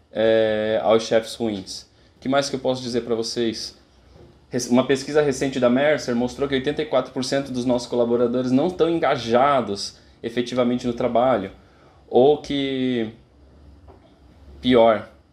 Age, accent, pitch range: 20-39, Brazilian, 110-130 Hz